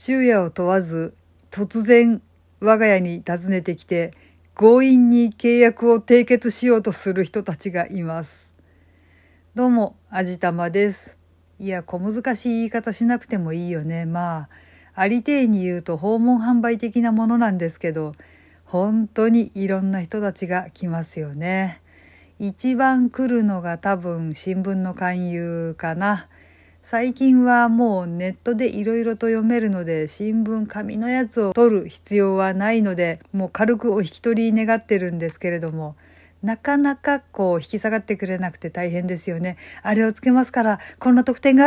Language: Japanese